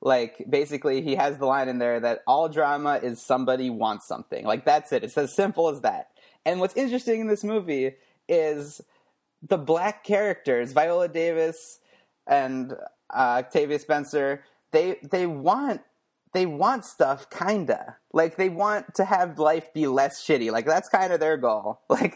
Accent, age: American, 30-49